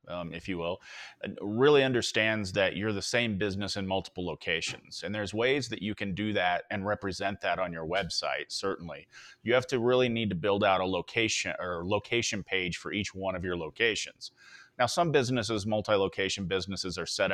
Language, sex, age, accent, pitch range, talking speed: English, male, 30-49, American, 95-115 Hz, 190 wpm